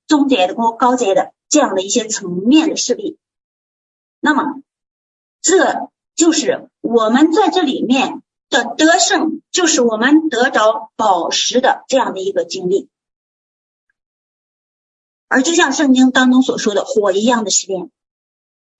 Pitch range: 240-315 Hz